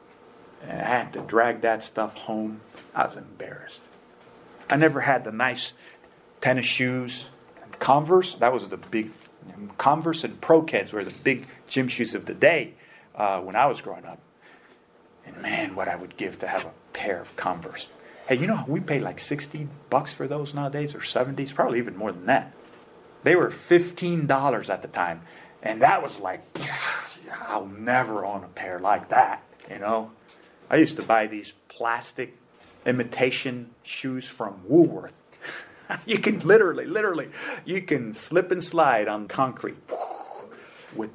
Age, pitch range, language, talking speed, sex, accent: 40-59, 105-140 Hz, English, 170 wpm, male, American